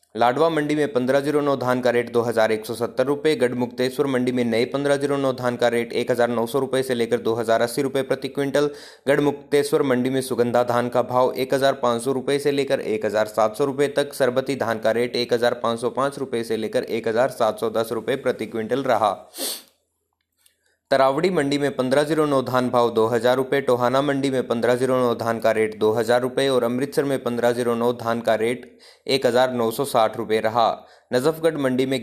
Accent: native